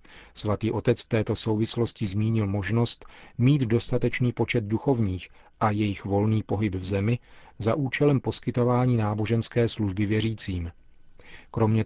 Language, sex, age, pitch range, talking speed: Czech, male, 40-59, 105-120 Hz, 120 wpm